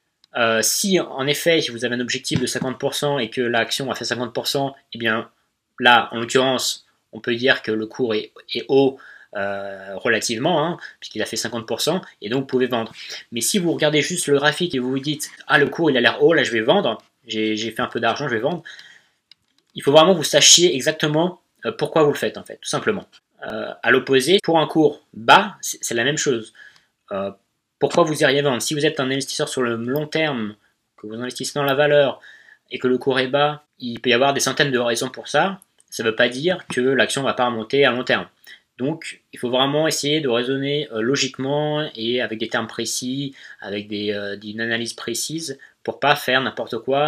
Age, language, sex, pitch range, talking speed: 20-39, French, male, 115-150 Hz, 220 wpm